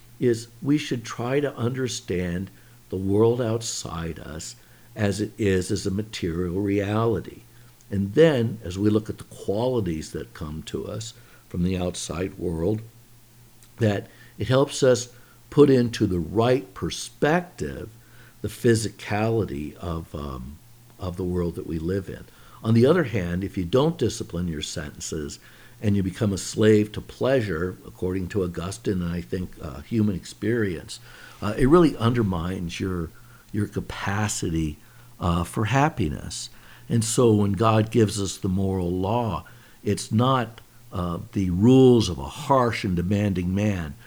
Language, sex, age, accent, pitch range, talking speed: English, male, 60-79, American, 90-115 Hz, 145 wpm